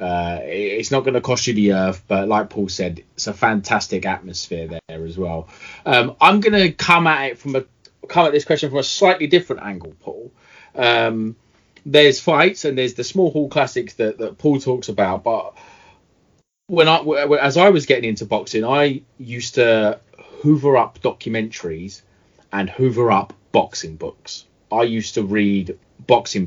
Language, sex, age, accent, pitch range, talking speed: English, male, 30-49, British, 105-140 Hz, 175 wpm